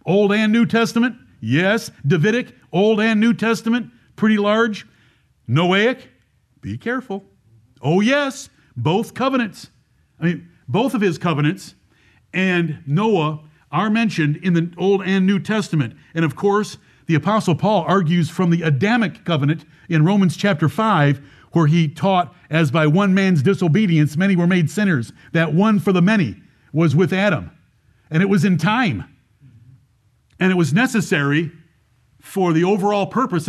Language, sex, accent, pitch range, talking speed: English, male, American, 150-200 Hz, 150 wpm